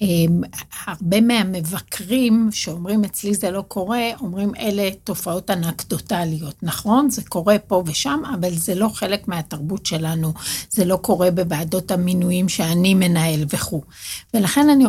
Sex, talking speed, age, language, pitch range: female, 130 wpm, 60-79, Hebrew, 180-220 Hz